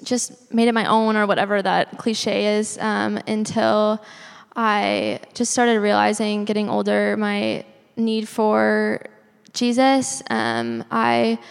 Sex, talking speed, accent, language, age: female, 125 wpm, American, English, 10-29